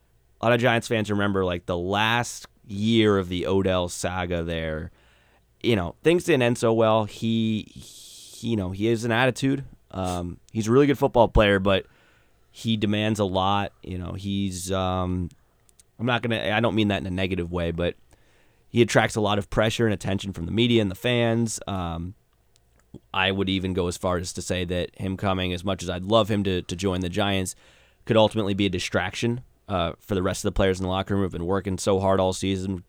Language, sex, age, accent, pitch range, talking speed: English, male, 30-49, American, 90-110 Hz, 220 wpm